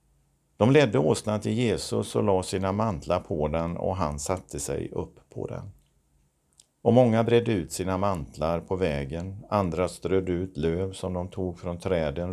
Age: 50-69